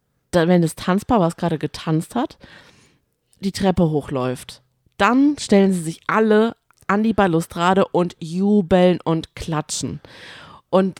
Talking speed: 125 wpm